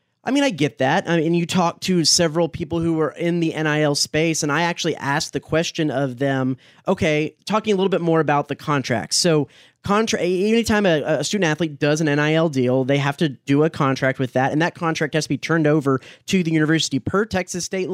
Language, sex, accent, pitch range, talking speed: English, male, American, 140-175 Hz, 225 wpm